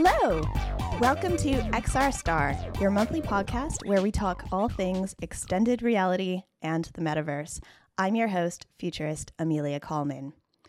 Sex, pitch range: female, 180-265 Hz